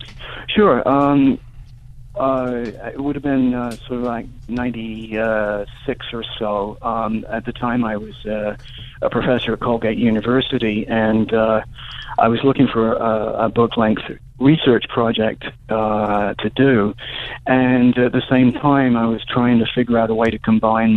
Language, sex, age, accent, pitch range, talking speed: English, male, 40-59, American, 110-130 Hz, 155 wpm